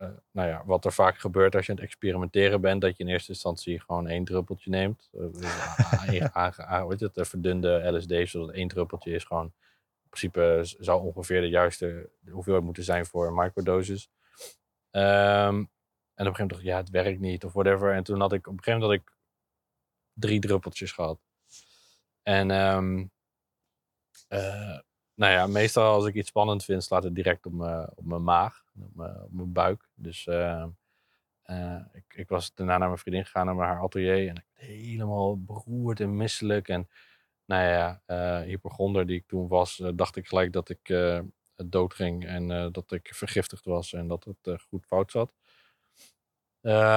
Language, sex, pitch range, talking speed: Dutch, male, 90-100 Hz, 190 wpm